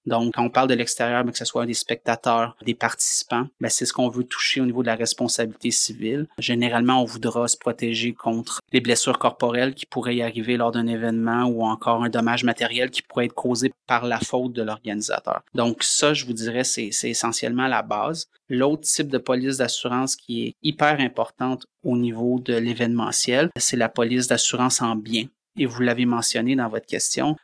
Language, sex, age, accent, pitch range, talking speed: French, male, 30-49, Canadian, 120-130 Hz, 200 wpm